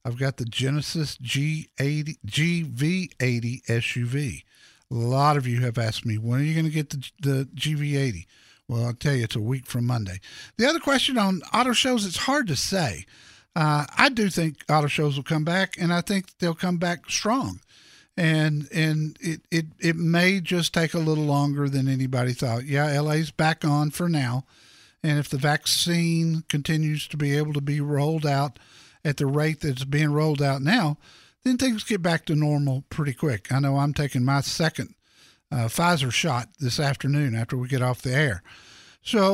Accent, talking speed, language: American, 190 wpm, English